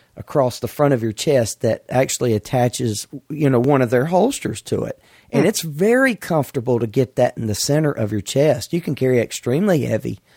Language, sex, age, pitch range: English, male, 40-59, 110-140 Hz